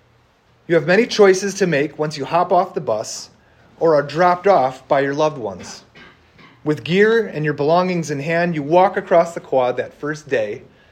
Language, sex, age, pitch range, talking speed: English, male, 30-49, 140-190 Hz, 190 wpm